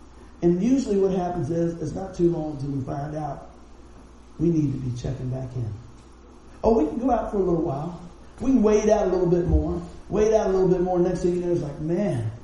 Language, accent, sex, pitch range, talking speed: English, American, male, 135-200 Hz, 240 wpm